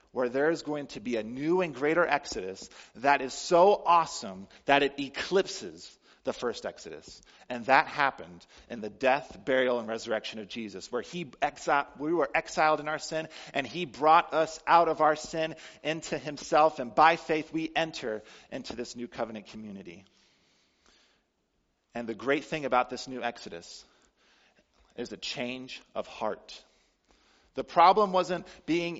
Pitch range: 125-170 Hz